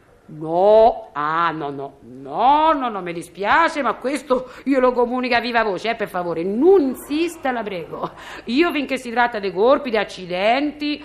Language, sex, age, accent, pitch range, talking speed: Italian, female, 50-69, native, 225-340 Hz, 175 wpm